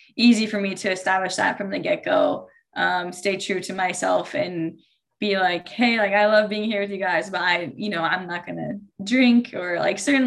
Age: 10-29